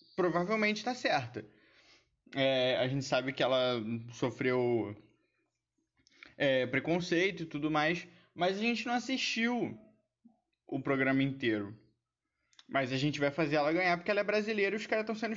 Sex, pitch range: male, 125-200 Hz